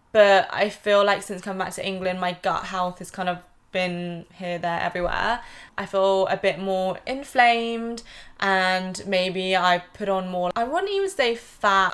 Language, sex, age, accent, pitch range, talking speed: English, female, 20-39, British, 175-205 Hz, 180 wpm